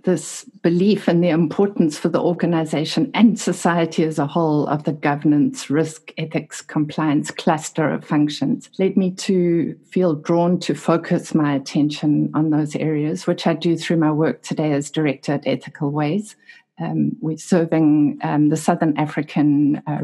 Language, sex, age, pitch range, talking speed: English, female, 60-79, 150-180 Hz, 160 wpm